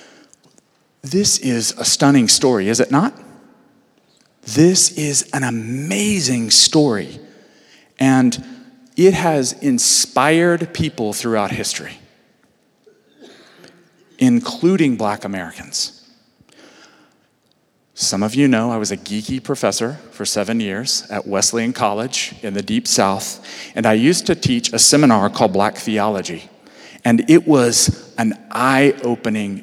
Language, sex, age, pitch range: English, male, 40-59, 115-170 Hz